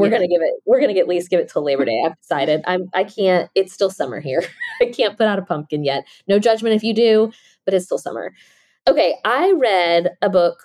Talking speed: 255 wpm